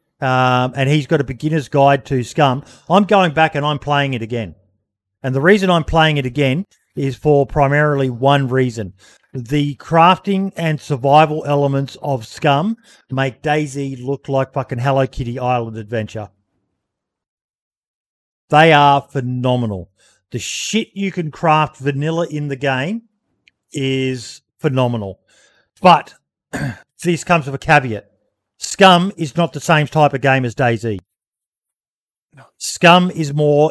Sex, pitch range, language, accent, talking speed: male, 130-160 Hz, English, Australian, 140 wpm